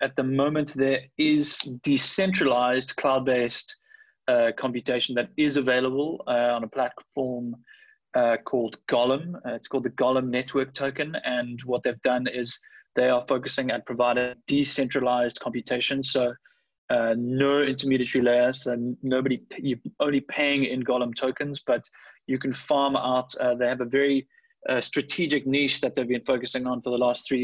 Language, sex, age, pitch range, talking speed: English, male, 20-39, 120-135 Hz, 160 wpm